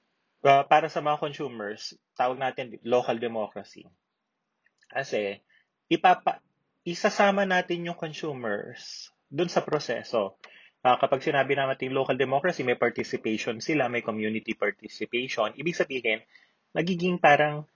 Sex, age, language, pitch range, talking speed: male, 20-39, Filipino, 110-150 Hz, 120 wpm